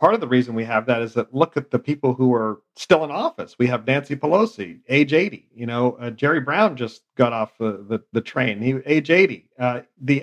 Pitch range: 115-135 Hz